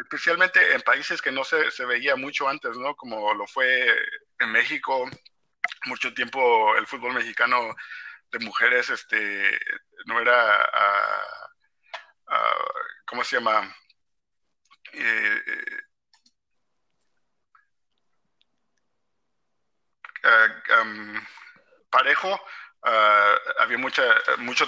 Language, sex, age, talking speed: Spanish, male, 50-69, 95 wpm